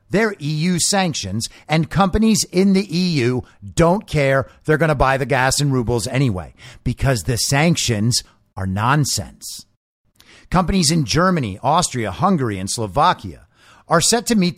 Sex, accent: male, American